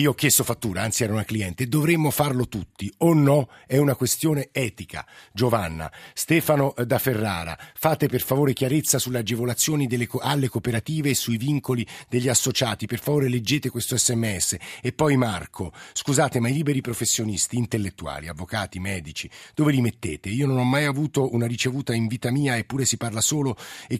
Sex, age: male, 50-69